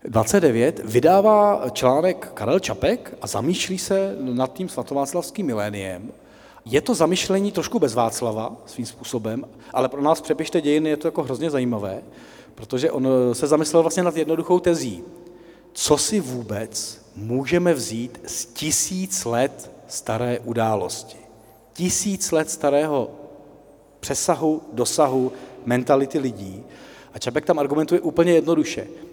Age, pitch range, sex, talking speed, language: 40-59, 120-170 Hz, male, 125 wpm, Czech